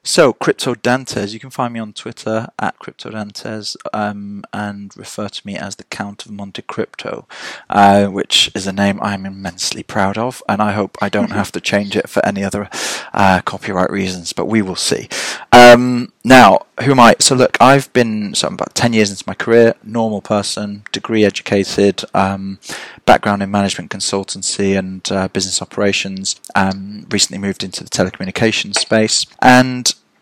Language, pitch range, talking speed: English, 95-110 Hz, 175 wpm